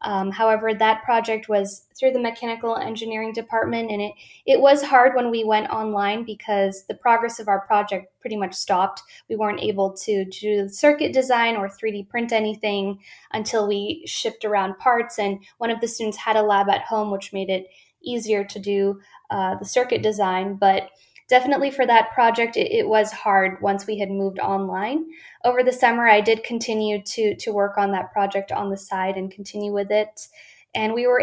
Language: English